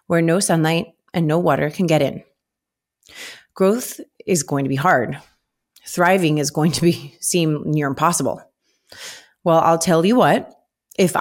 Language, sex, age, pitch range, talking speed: English, female, 30-49, 155-185 Hz, 155 wpm